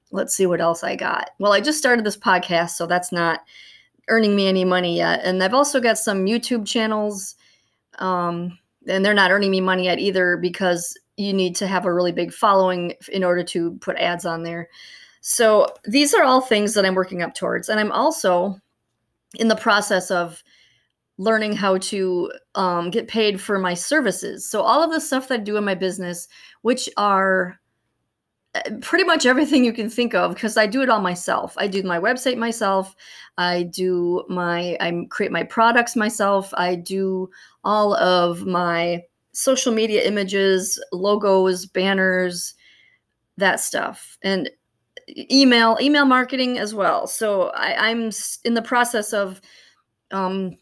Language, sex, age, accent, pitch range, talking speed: English, female, 30-49, American, 180-225 Hz, 170 wpm